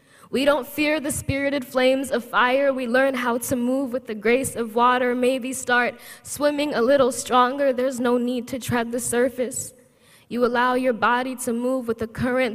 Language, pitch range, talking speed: English, 245-270 Hz, 190 wpm